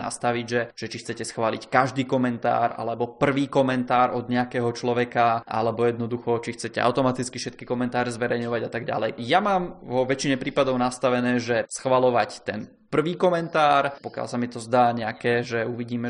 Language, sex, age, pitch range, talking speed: Czech, male, 20-39, 120-135 Hz, 165 wpm